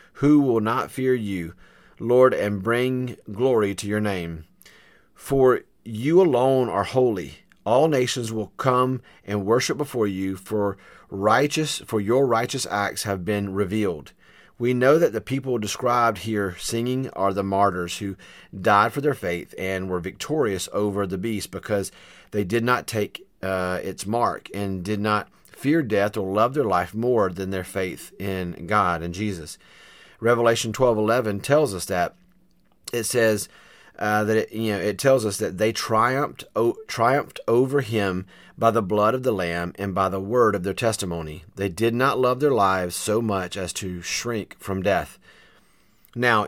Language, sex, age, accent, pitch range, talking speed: English, male, 40-59, American, 95-125 Hz, 170 wpm